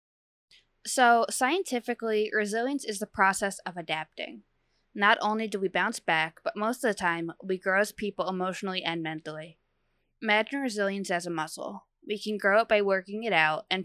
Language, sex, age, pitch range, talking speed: English, female, 20-39, 170-215 Hz, 175 wpm